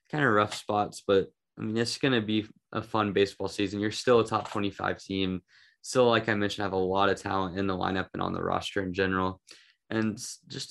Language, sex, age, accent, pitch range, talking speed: English, male, 10-29, American, 95-110 Hz, 230 wpm